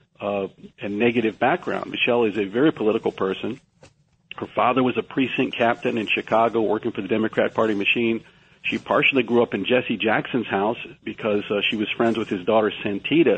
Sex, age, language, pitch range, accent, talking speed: male, 50-69, English, 110-135 Hz, American, 185 wpm